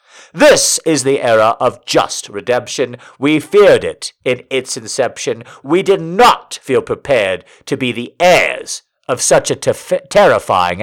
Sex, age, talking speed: male, 50-69, 150 wpm